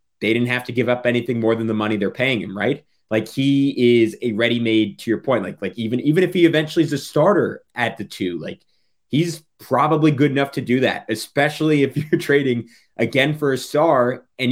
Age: 20-39